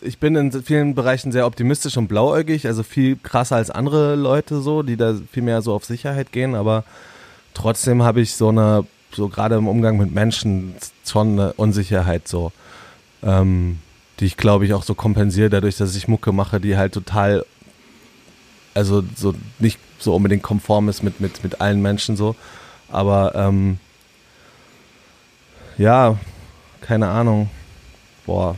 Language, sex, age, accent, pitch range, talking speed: German, male, 30-49, German, 100-115 Hz, 155 wpm